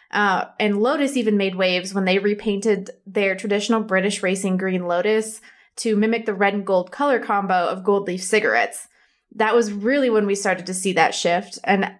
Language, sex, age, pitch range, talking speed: English, female, 20-39, 195-250 Hz, 190 wpm